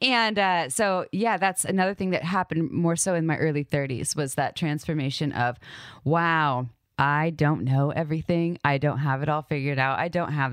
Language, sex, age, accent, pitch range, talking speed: English, female, 20-39, American, 145-185 Hz, 195 wpm